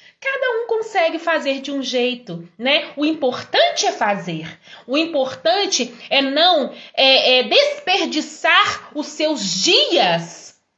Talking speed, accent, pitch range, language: 110 wpm, Brazilian, 215-310 Hz, Portuguese